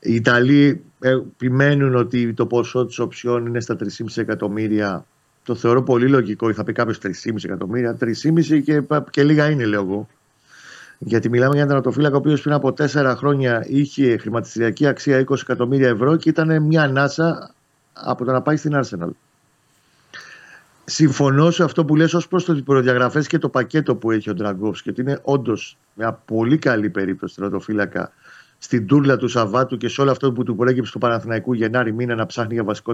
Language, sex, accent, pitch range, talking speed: Greek, male, native, 115-140 Hz, 180 wpm